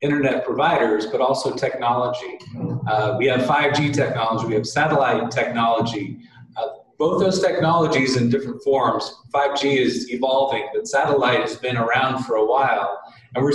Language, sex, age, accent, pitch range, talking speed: English, male, 40-59, American, 125-160 Hz, 150 wpm